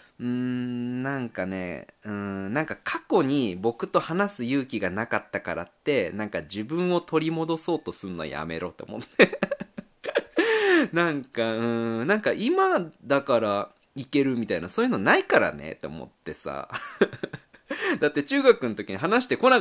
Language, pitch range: Japanese, 110-170 Hz